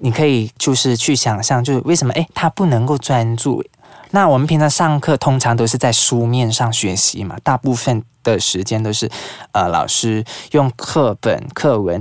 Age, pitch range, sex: 20-39, 115-145 Hz, male